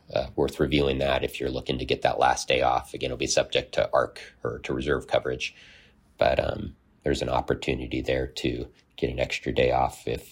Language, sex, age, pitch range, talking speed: English, male, 30-49, 65-85 Hz, 210 wpm